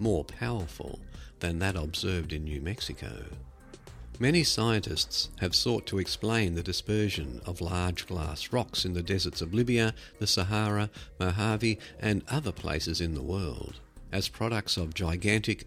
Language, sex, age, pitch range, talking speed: English, male, 50-69, 80-110 Hz, 145 wpm